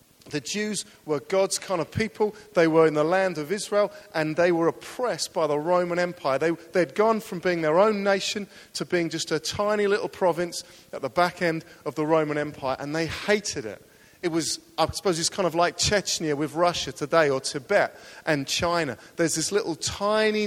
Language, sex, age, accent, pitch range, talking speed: English, male, 40-59, British, 160-195 Hz, 200 wpm